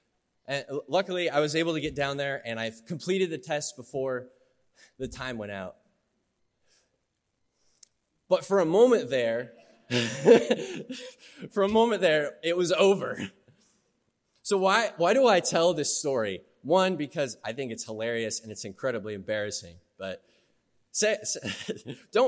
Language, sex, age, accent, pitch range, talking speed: English, male, 20-39, American, 135-200 Hz, 145 wpm